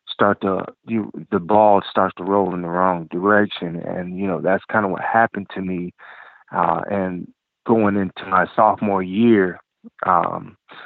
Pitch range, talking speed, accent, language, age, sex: 90-105 Hz, 165 wpm, American, English, 30-49, male